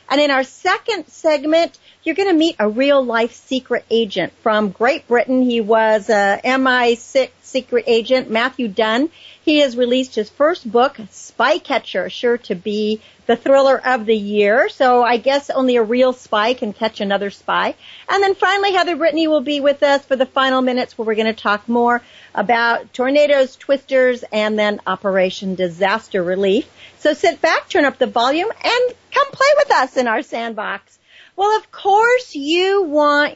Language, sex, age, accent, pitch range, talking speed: English, female, 50-69, American, 225-295 Hz, 175 wpm